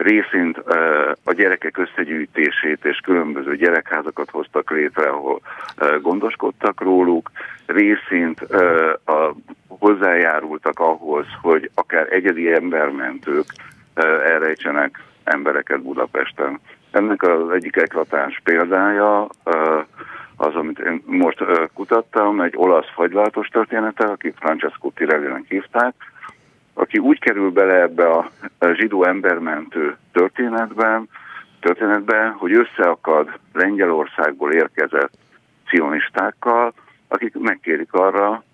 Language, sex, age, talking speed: Hungarian, male, 60-79, 95 wpm